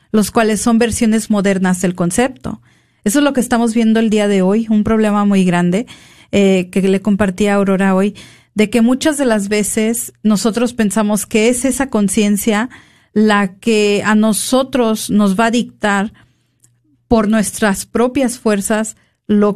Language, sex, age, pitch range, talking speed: Spanish, female, 40-59, 195-225 Hz, 165 wpm